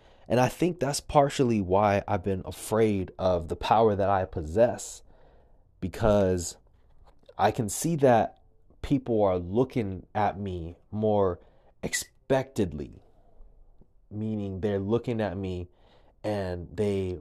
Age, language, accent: 20-39, English, American